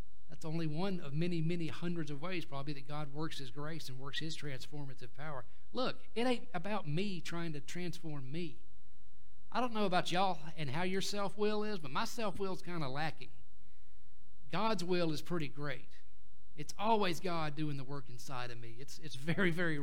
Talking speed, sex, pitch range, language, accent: 195 wpm, male, 130-170 Hz, English, American